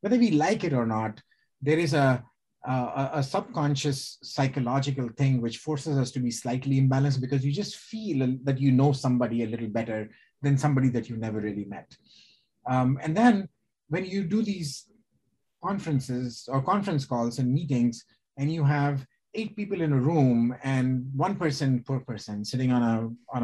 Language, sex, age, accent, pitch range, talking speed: English, male, 30-49, Indian, 120-150 Hz, 175 wpm